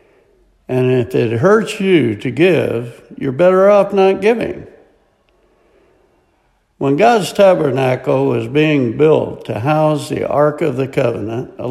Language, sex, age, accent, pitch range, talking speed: English, male, 60-79, American, 140-200 Hz, 135 wpm